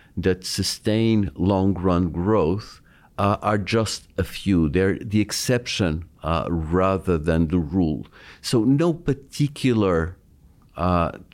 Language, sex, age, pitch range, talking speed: English, male, 50-69, 90-125 Hz, 110 wpm